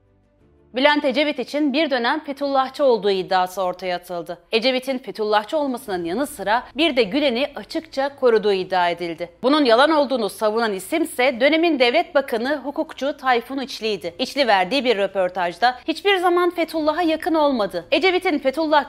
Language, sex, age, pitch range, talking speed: Turkish, female, 30-49, 200-295 Hz, 140 wpm